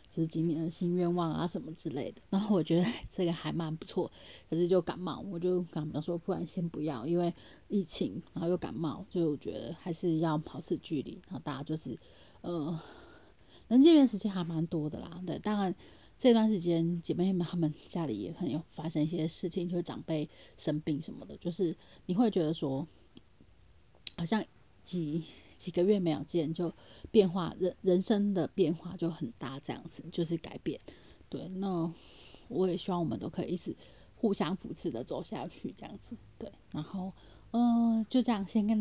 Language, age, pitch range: Chinese, 30-49, 160-195 Hz